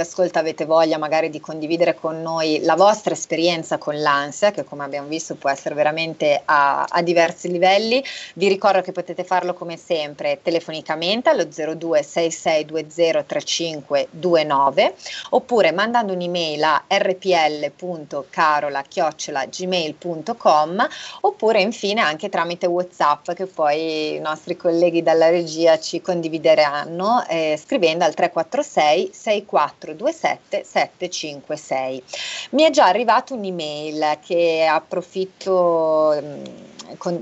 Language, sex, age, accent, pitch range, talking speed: Italian, female, 30-49, native, 155-190 Hz, 110 wpm